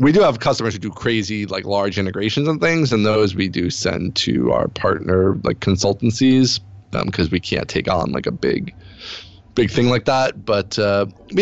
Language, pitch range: English, 95-120 Hz